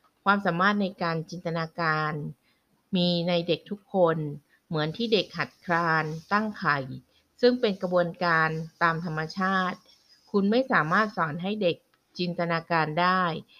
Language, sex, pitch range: Thai, female, 160-200 Hz